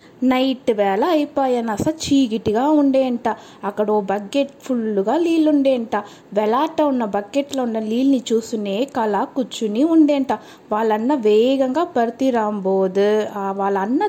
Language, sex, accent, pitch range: Telugu, female, native, 220-320 Hz